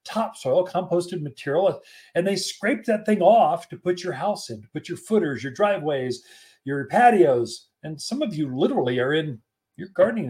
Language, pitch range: English, 140-220 Hz